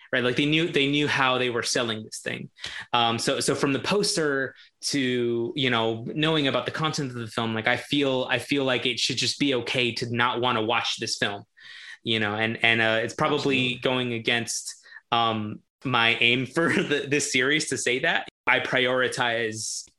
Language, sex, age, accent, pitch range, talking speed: English, male, 20-39, American, 120-145 Hz, 200 wpm